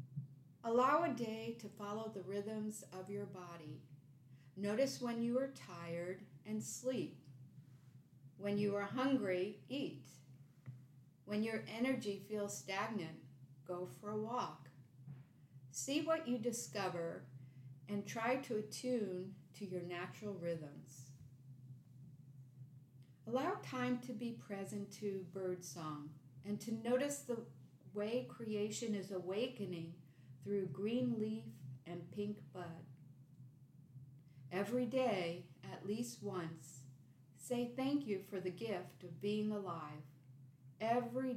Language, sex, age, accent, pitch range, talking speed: English, female, 50-69, American, 140-215 Hz, 115 wpm